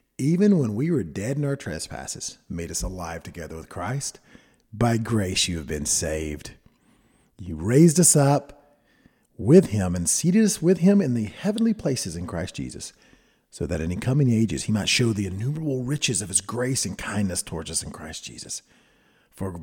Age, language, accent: 50-69, English, American